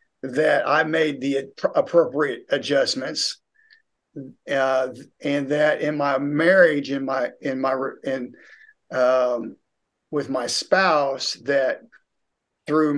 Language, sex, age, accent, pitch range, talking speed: English, male, 50-69, American, 140-170 Hz, 105 wpm